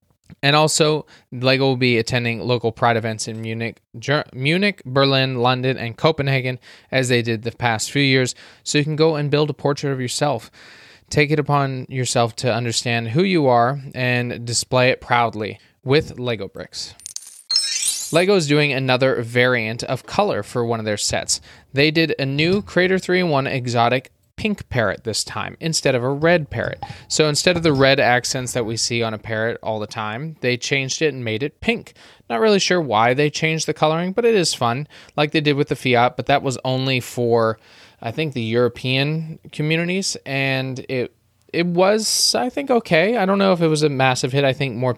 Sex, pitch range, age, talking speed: male, 120-150 Hz, 20-39, 195 wpm